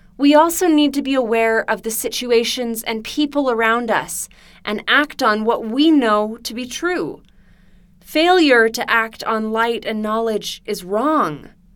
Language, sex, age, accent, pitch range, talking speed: English, female, 20-39, American, 195-260 Hz, 160 wpm